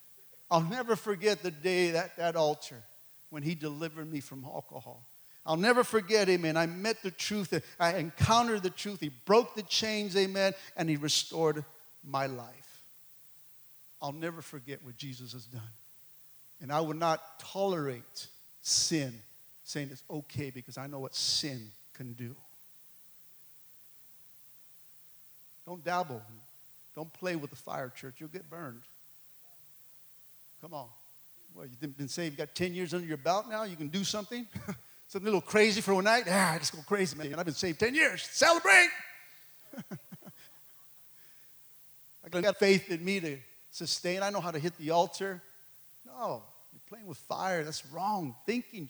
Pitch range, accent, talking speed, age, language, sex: 140-190 Hz, American, 160 wpm, 50-69, English, male